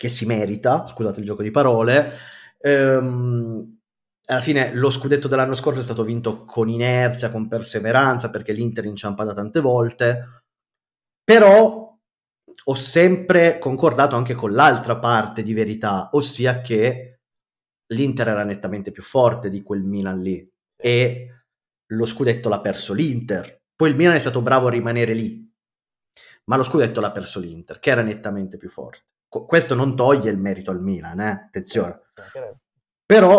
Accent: native